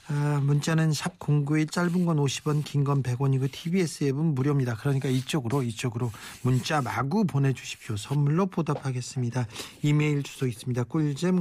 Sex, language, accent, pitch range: male, Korean, native, 130-160 Hz